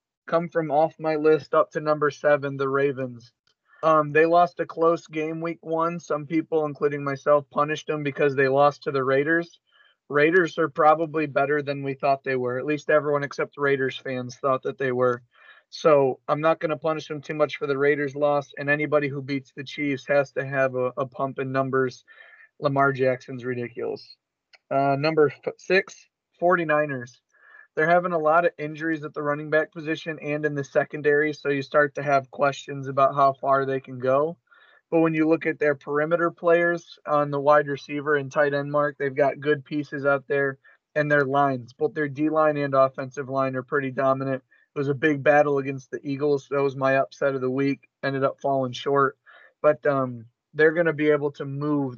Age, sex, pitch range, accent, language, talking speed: 30-49, male, 135-155 Hz, American, English, 200 wpm